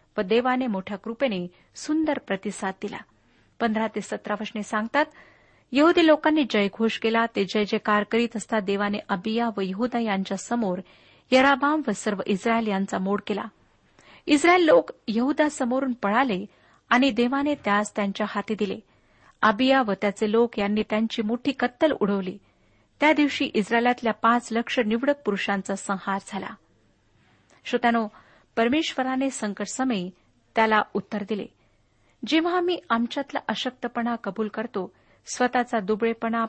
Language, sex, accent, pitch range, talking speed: Marathi, female, native, 205-255 Hz, 120 wpm